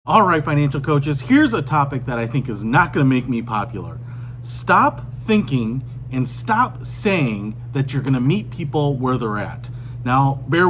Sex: male